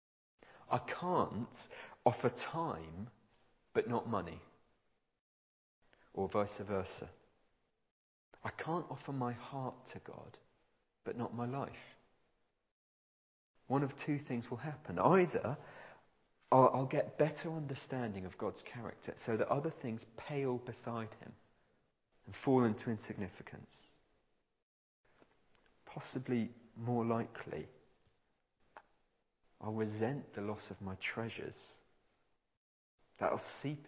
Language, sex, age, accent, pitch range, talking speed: English, male, 40-59, British, 95-130 Hz, 105 wpm